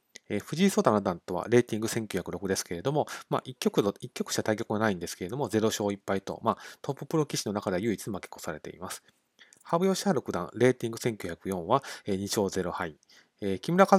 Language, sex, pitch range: Japanese, male, 100-140 Hz